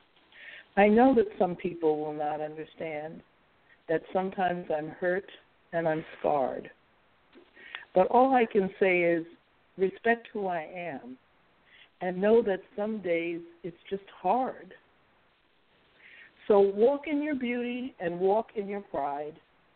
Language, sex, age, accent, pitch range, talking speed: English, female, 60-79, American, 160-220 Hz, 130 wpm